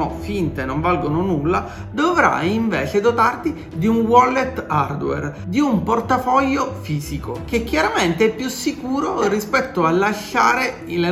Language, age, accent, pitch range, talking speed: Italian, 40-59, native, 175-255 Hz, 130 wpm